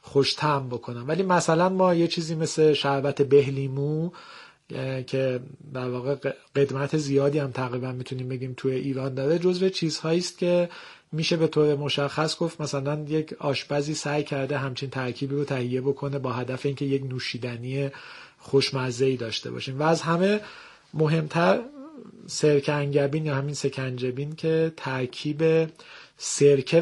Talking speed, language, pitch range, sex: 135 wpm, Persian, 135-160 Hz, male